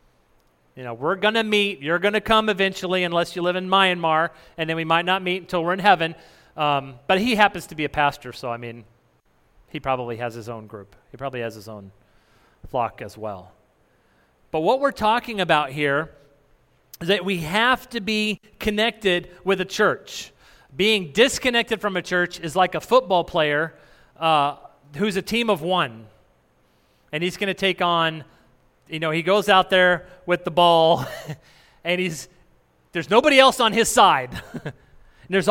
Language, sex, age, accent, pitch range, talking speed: English, male, 30-49, American, 145-210 Hz, 185 wpm